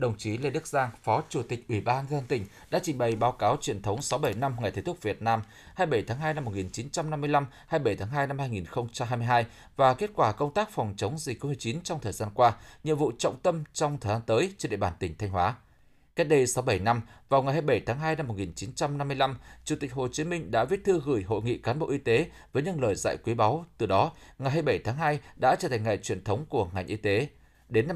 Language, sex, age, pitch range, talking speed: Vietnamese, male, 20-39, 110-155 Hz, 245 wpm